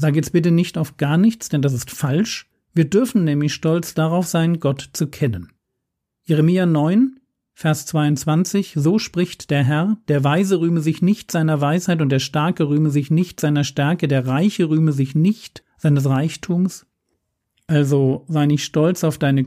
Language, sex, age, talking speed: German, male, 40-59, 175 wpm